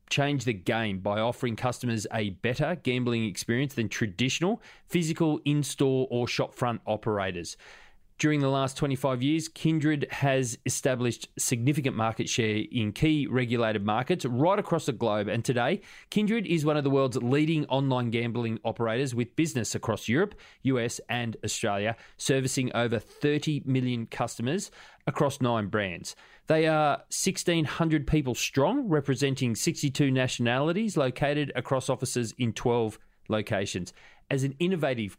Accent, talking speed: Australian, 140 wpm